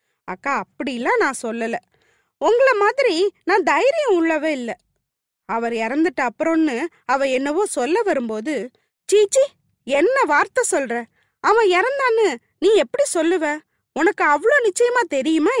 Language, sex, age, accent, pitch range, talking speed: Tamil, female, 20-39, native, 265-405 Hz, 120 wpm